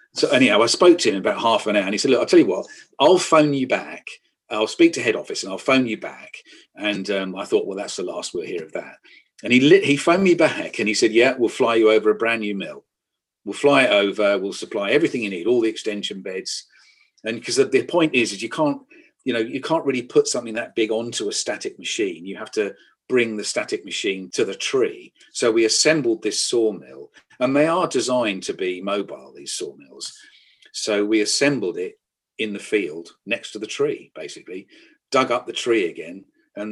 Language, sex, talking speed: English, male, 230 wpm